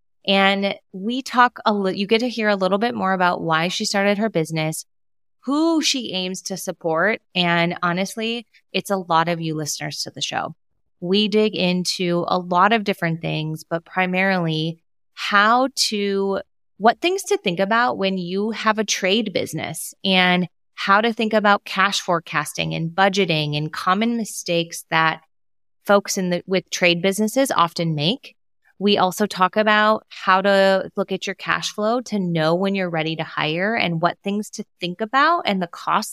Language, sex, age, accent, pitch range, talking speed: English, female, 20-39, American, 165-210 Hz, 175 wpm